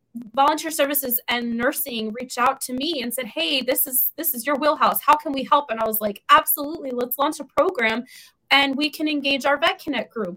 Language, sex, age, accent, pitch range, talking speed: English, female, 20-39, American, 245-295 Hz, 220 wpm